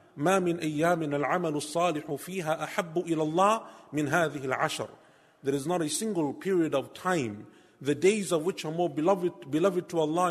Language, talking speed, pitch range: English, 170 wpm, 145-175 Hz